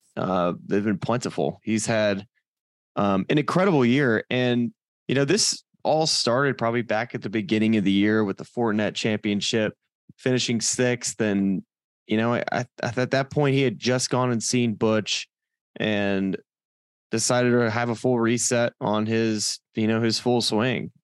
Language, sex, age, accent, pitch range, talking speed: English, male, 20-39, American, 105-125 Hz, 170 wpm